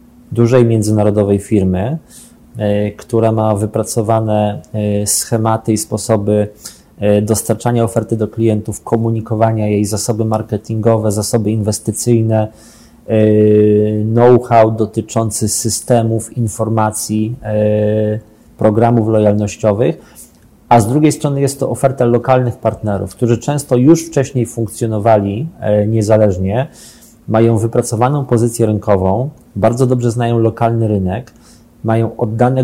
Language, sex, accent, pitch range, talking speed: Polish, male, native, 110-125 Hz, 95 wpm